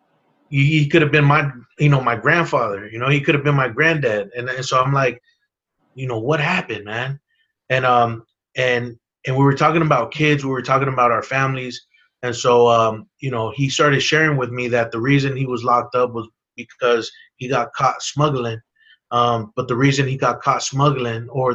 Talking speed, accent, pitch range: 205 wpm, American, 120-145 Hz